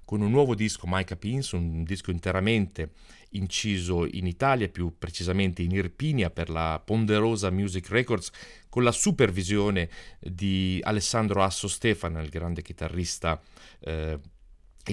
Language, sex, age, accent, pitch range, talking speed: Italian, male, 30-49, native, 85-105 Hz, 130 wpm